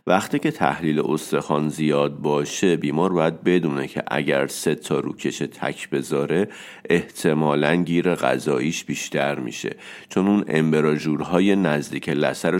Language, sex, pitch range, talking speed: Persian, male, 75-90 Hz, 125 wpm